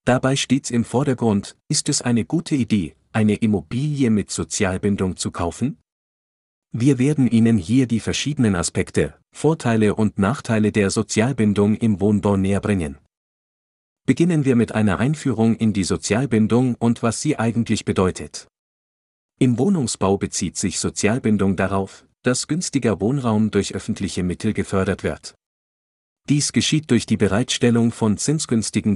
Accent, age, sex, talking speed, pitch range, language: German, 50-69, male, 135 wpm, 100-120 Hz, German